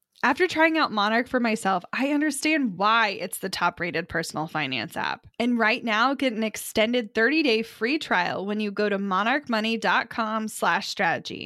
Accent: American